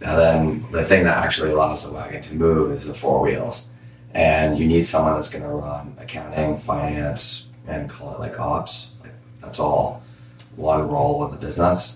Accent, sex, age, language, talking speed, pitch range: American, male, 30-49, English, 190 wpm, 75-110 Hz